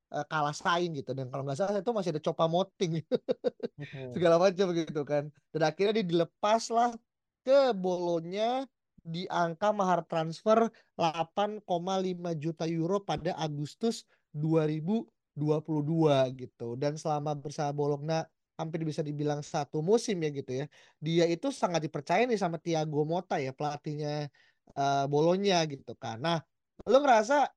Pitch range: 150-195 Hz